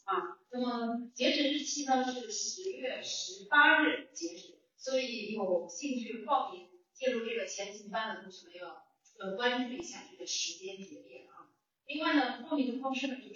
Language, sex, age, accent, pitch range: Chinese, female, 30-49, native, 195-270 Hz